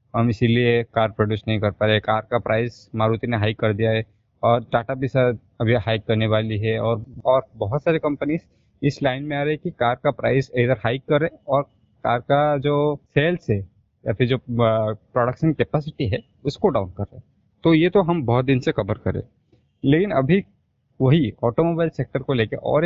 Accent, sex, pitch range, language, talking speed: native, male, 110-145 Hz, Hindi, 205 wpm